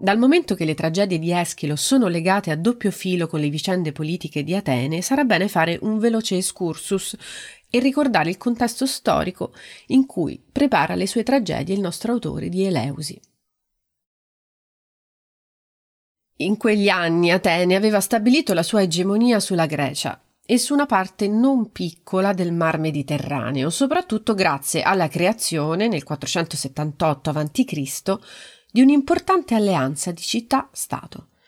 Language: Italian